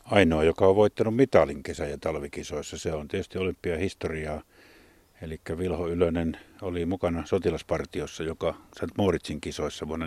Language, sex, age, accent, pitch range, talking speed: Finnish, male, 50-69, native, 80-95 Hz, 130 wpm